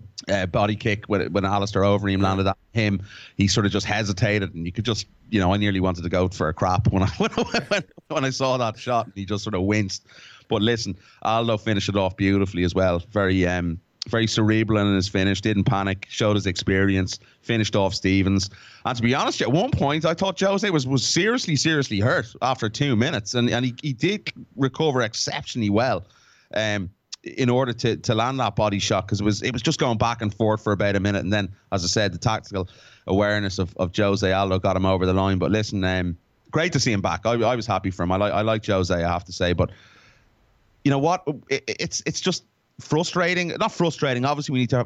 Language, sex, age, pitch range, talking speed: English, male, 30-49, 100-125 Hz, 230 wpm